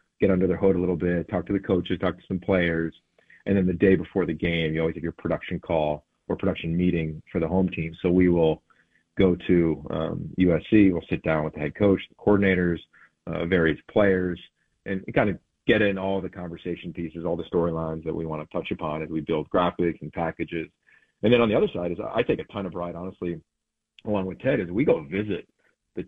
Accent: American